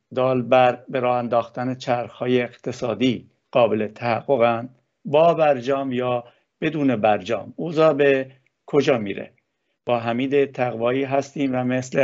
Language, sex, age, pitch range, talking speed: Persian, male, 50-69, 120-140 Hz, 115 wpm